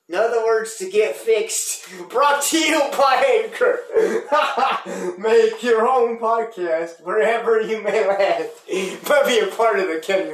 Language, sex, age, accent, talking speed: English, male, 30-49, American, 150 wpm